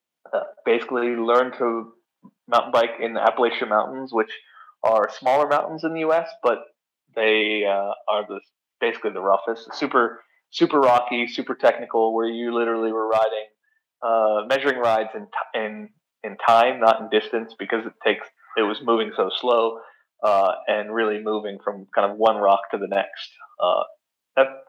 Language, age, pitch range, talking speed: English, 20-39, 105-125 Hz, 165 wpm